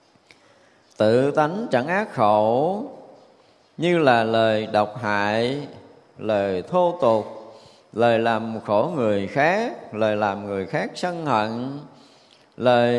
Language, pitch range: Vietnamese, 110-160 Hz